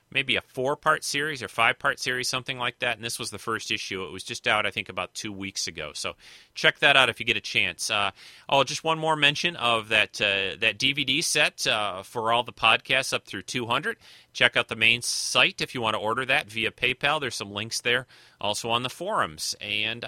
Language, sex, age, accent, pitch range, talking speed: English, male, 30-49, American, 110-135 Hz, 235 wpm